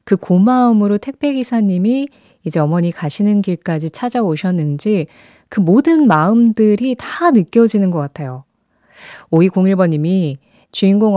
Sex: female